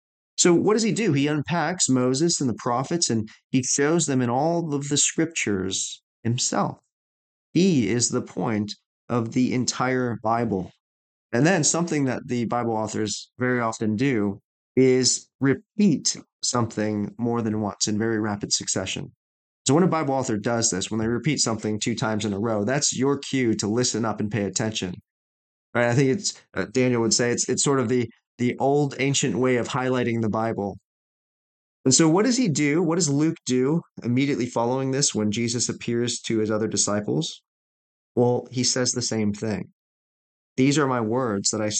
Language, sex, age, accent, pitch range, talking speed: English, male, 30-49, American, 110-130 Hz, 180 wpm